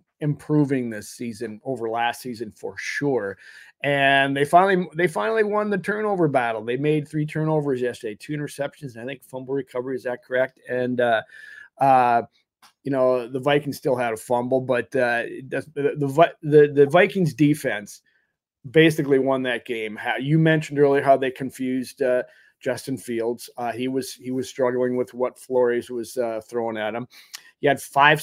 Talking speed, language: 175 wpm, English